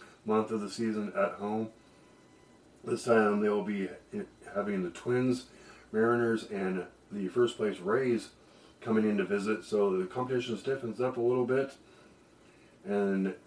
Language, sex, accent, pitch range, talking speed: English, male, American, 100-120 Hz, 145 wpm